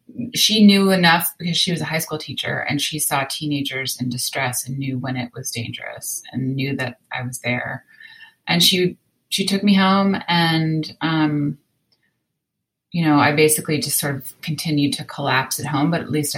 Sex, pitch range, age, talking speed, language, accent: female, 135-165 Hz, 30-49, 185 wpm, English, American